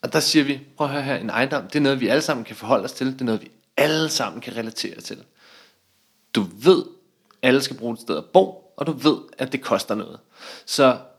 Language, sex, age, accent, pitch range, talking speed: Danish, male, 30-49, native, 120-155 Hz, 250 wpm